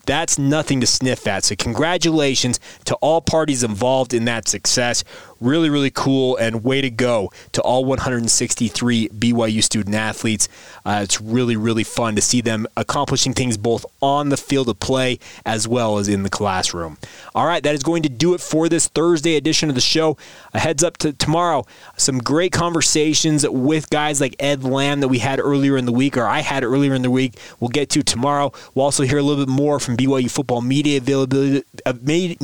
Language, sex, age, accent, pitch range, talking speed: English, male, 20-39, American, 120-145 Hz, 200 wpm